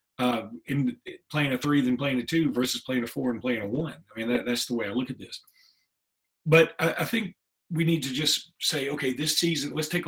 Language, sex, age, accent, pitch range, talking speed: English, male, 40-59, American, 120-165 Hz, 240 wpm